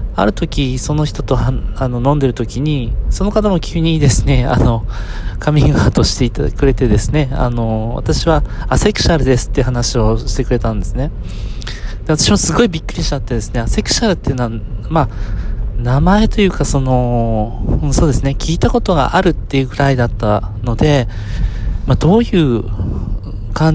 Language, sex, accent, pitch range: Japanese, male, native, 110-155 Hz